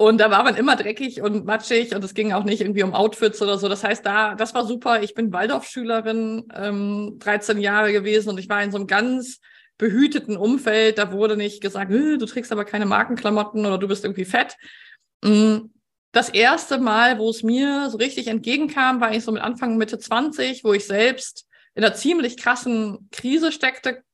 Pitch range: 210-245 Hz